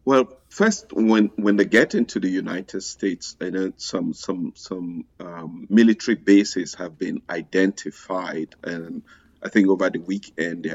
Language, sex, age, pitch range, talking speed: English, male, 50-69, 95-110 Hz, 155 wpm